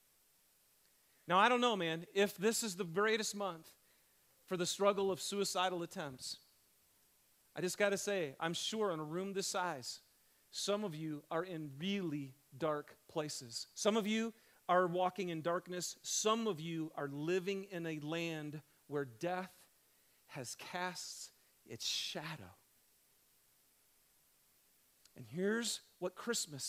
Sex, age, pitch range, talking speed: male, 40-59, 165-245 Hz, 140 wpm